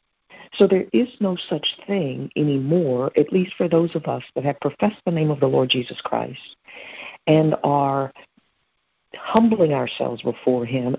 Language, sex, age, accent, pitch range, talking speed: English, female, 60-79, American, 140-185 Hz, 160 wpm